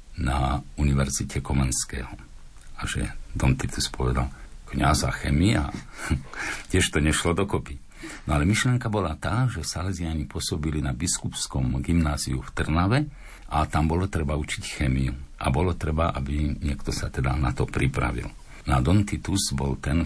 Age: 50-69